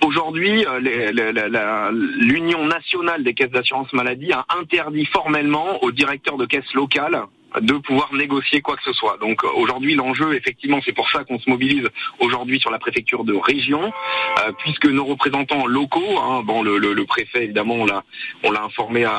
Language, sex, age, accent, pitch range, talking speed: French, male, 40-59, French, 125-160 Hz, 190 wpm